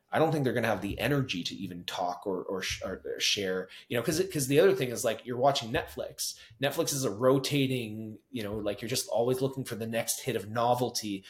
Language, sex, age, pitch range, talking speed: English, male, 30-49, 105-135 Hz, 245 wpm